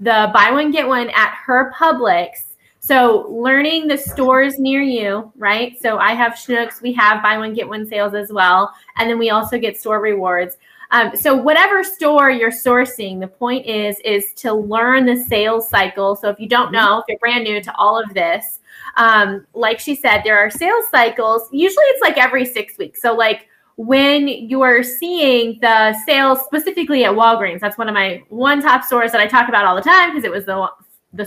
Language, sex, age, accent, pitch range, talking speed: English, female, 10-29, American, 215-275 Hz, 205 wpm